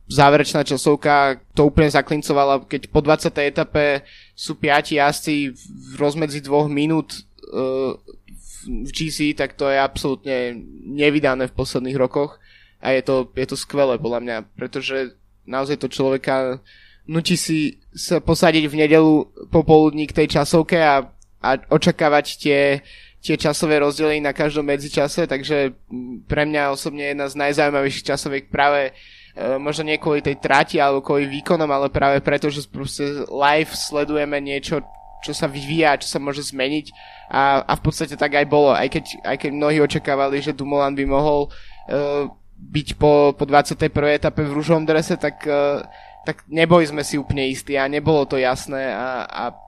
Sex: male